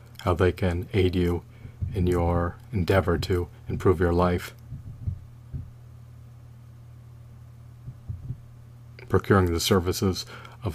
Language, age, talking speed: English, 40-59, 90 wpm